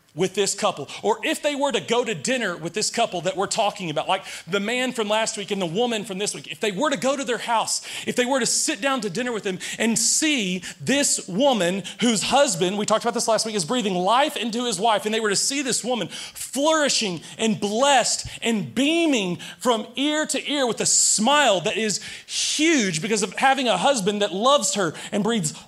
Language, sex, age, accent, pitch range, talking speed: English, male, 30-49, American, 165-245 Hz, 230 wpm